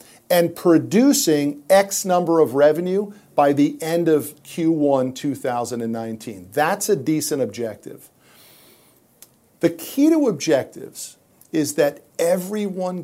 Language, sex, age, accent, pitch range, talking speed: English, male, 50-69, American, 130-195 Hz, 105 wpm